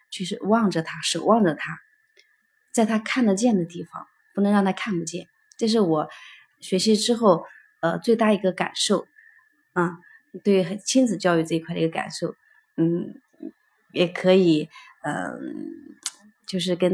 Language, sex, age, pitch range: Chinese, female, 20-39, 175-250 Hz